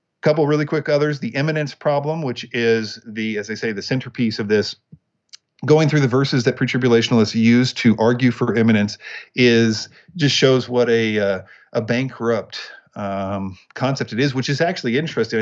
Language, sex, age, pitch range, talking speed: English, male, 50-69, 115-135 Hz, 170 wpm